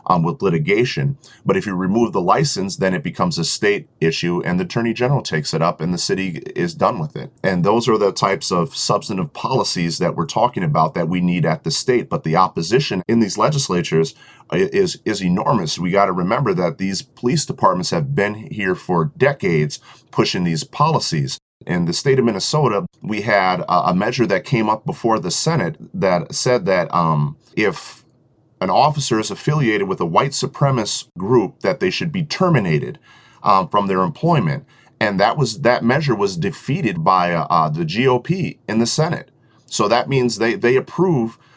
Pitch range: 95-140 Hz